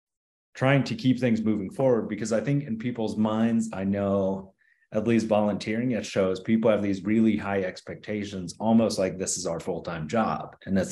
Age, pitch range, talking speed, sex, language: 30-49, 90-110 Hz, 190 wpm, male, English